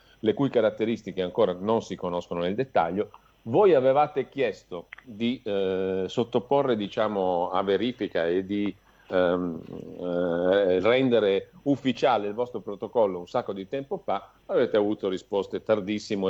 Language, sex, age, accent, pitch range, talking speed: Italian, male, 50-69, native, 95-125 Hz, 135 wpm